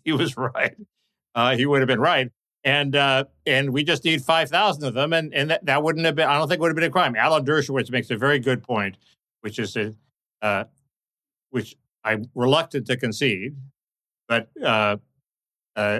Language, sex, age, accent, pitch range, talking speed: English, male, 60-79, American, 120-150 Hz, 205 wpm